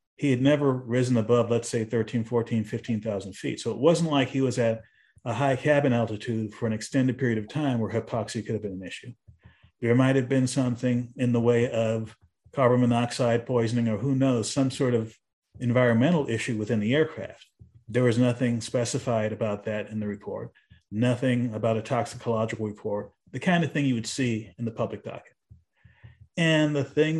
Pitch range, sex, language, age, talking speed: 110-130 Hz, male, English, 40-59, 190 wpm